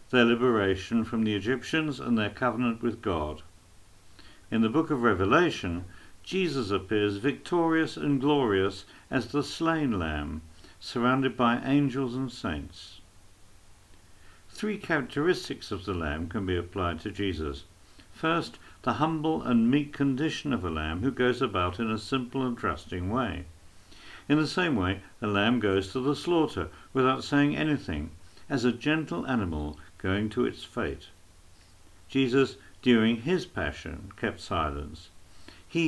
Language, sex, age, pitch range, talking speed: English, male, 60-79, 90-135 Hz, 140 wpm